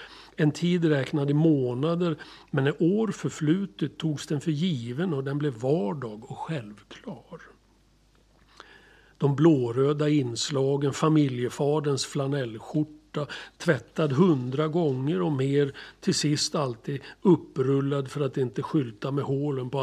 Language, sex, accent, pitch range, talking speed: Swedish, male, native, 130-160 Hz, 120 wpm